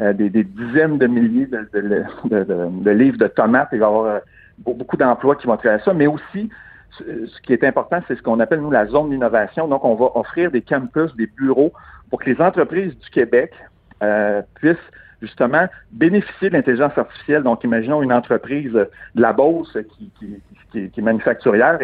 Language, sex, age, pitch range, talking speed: French, male, 60-79, 110-150 Hz, 195 wpm